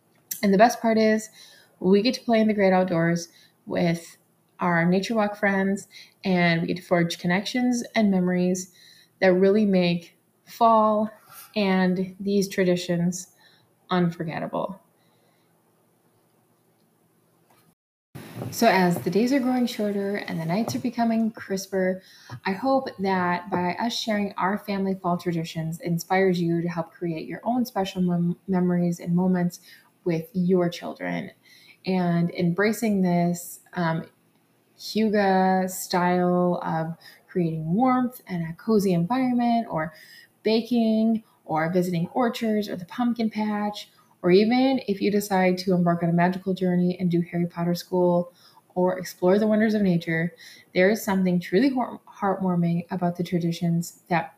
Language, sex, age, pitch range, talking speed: English, female, 20-39, 175-210 Hz, 135 wpm